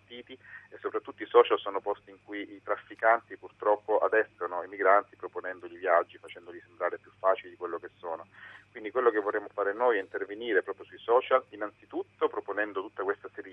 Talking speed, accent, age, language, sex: 180 wpm, native, 40-59, Italian, male